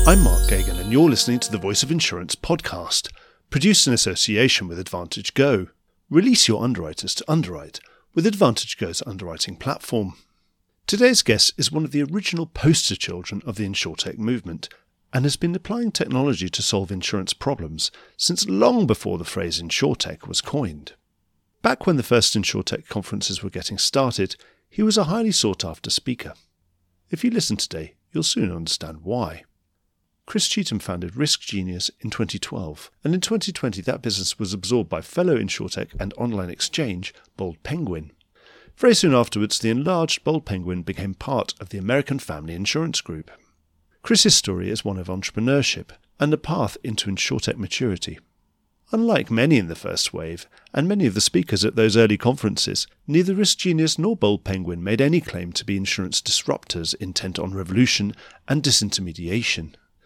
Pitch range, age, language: 90-145 Hz, 40-59, English